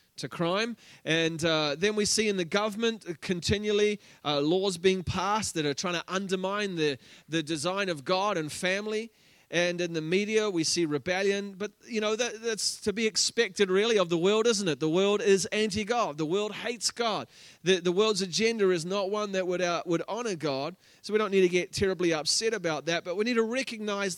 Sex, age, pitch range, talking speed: male, 30-49, 165-210 Hz, 210 wpm